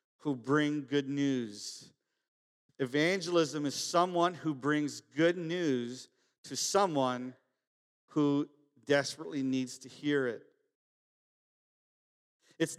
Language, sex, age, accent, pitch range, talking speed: English, male, 50-69, American, 145-180 Hz, 95 wpm